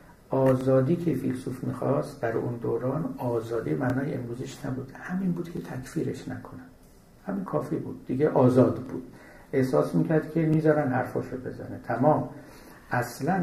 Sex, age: male, 60-79